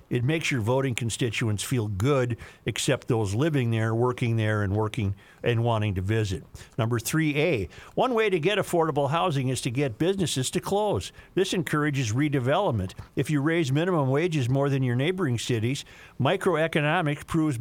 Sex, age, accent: male, 50-69, American